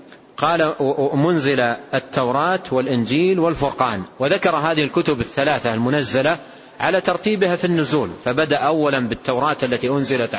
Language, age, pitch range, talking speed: Arabic, 40-59, 125-165 Hz, 110 wpm